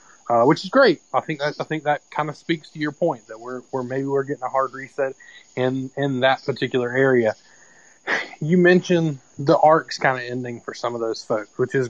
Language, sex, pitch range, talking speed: English, male, 120-150 Hz, 220 wpm